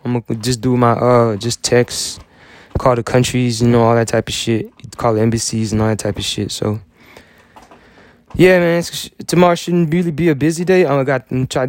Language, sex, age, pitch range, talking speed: English, male, 20-39, 110-125 Hz, 215 wpm